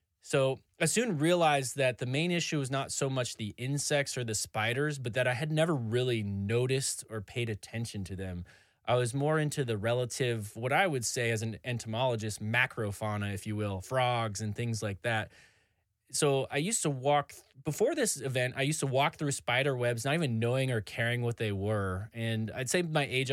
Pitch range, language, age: 110-135 Hz, English, 20-39